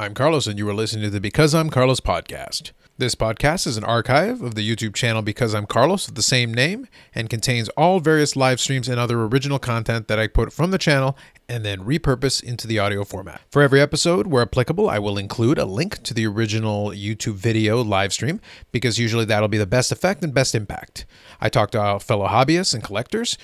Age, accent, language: 30-49, American, English